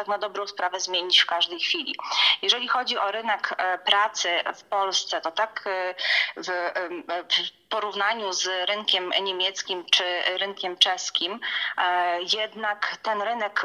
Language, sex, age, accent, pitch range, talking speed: Polish, female, 30-49, native, 175-205 Hz, 120 wpm